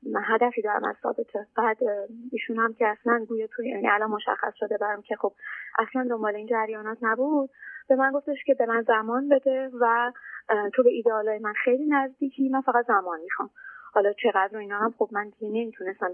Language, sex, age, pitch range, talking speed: Persian, female, 30-49, 220-260 Hz, 180 wpm